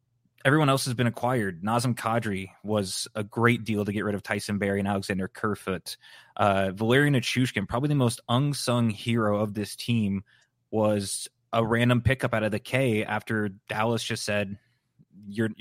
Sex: male